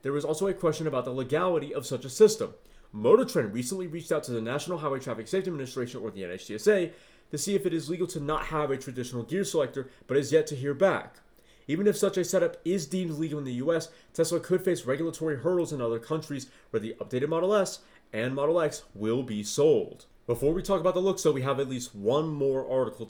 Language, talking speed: English, 230 wpm